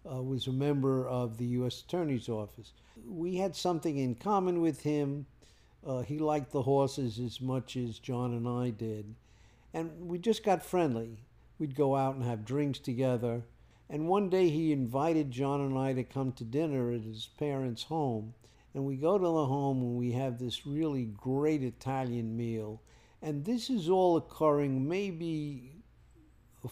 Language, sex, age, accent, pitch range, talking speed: English, male, 50-69, American, 120-150 Hz, 175 wpm